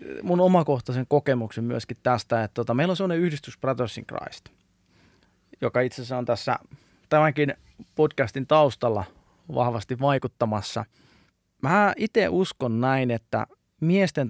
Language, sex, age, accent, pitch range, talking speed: Finnish, male, 20-39, native, 115-145 Hz, 120 wpm